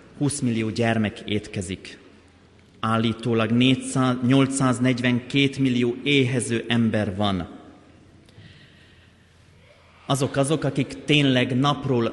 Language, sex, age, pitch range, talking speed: Hungarian, male, 30-49, 110-135 Hz, 75 wpm